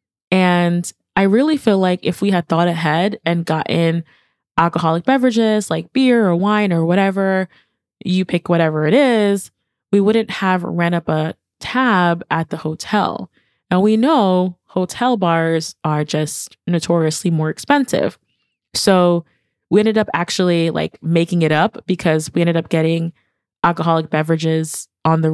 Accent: American